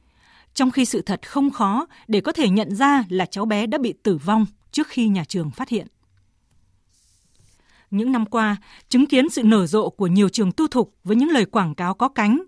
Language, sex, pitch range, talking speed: Vietnamese, female, 200-255 Hz, 210 wpm